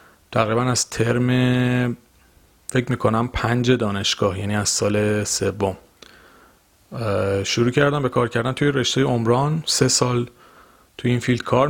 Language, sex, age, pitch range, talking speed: Persian, male, 30-49, 105-130 Hz, 135 wpm